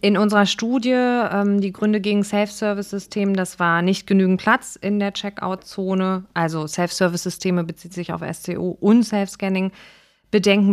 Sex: female